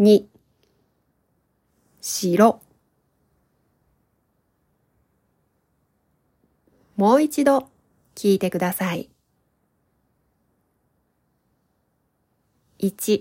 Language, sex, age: Japanese, female, 40-59